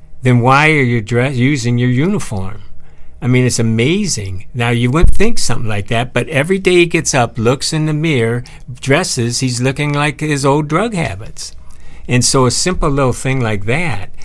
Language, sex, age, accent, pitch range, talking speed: English, male, 60-79, American, 100-130 Hz, 195 wpm